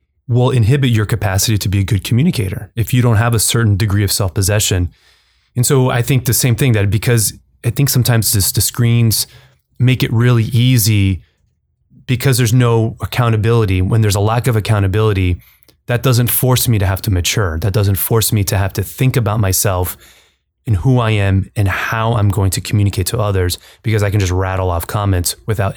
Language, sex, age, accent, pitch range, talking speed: English, male, 20-39, American, 95-125 Hz, 195 wpm